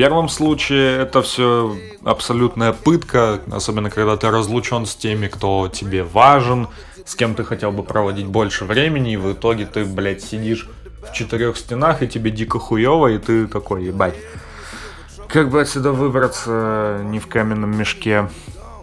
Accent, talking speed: native, 155 wpm